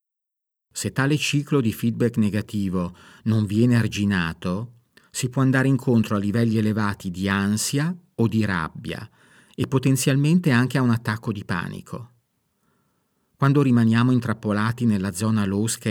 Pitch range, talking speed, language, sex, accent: 100-125 Hz, 130 wpm, Italian, male, native